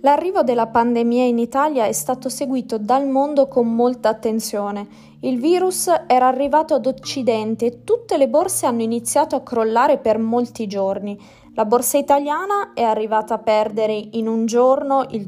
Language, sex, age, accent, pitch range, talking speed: Italian, female, 20-39, native, 205-270 Hz, 160 wpm